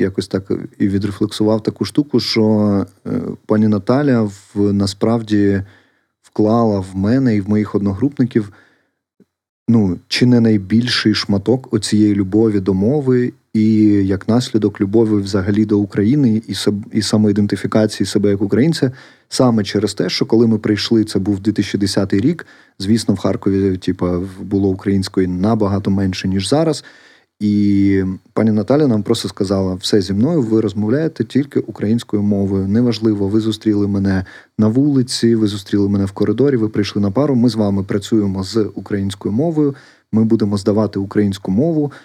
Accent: native